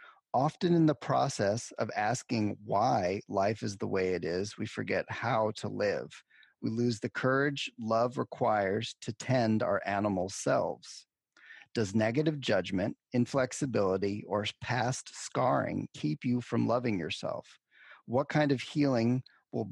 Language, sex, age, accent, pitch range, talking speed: English, male, 40-59, American, 105-130 Hz, 140 wpm